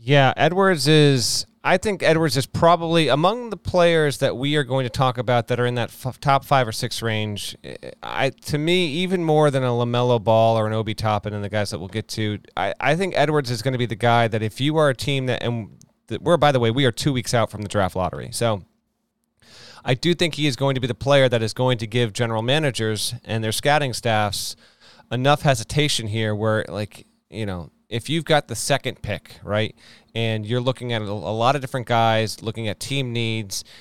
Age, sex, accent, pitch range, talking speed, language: 30-49, male, American, 115-150 Hz, 230 wpm, English